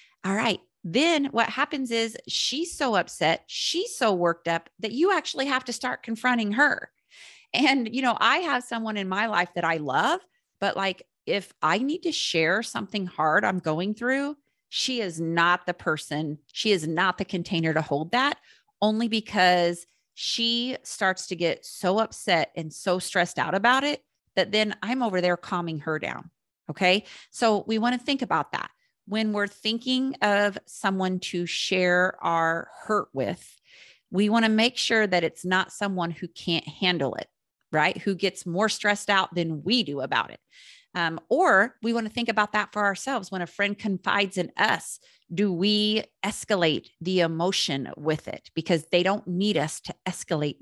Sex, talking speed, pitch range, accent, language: female, 180 wpm, 175-230 Hz, American, English